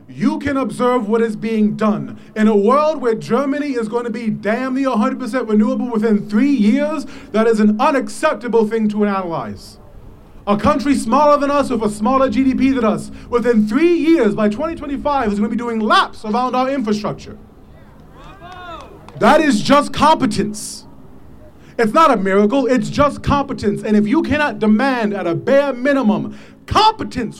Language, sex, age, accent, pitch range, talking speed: English, male, 30-49, American, 210-270 Hz, 165 wpm